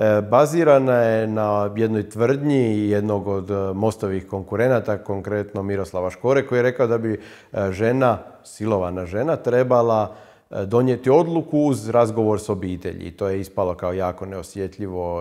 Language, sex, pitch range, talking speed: Croatian, male, 105-140 Hz, 130 wpm